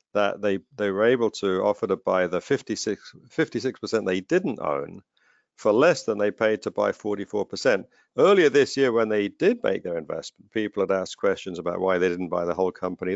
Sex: male